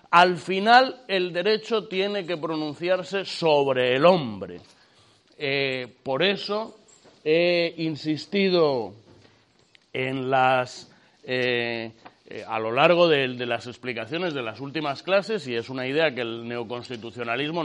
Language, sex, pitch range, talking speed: Spanish, male, 125-185 Hz, 125 wpm